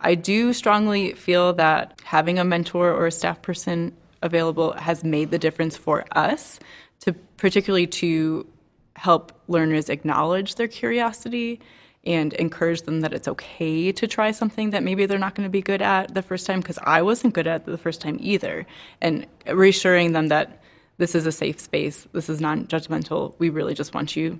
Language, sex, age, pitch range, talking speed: English, female, 20-39, 160-195 Hz, 180 wpm